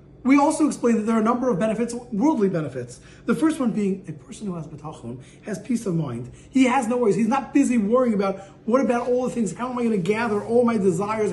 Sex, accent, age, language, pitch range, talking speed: male, American, 30-49, English, 175-235 Hz, 250 wpm